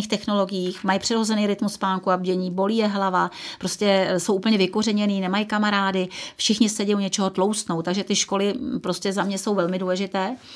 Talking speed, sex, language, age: 170 wpm, female, Czech, 40-59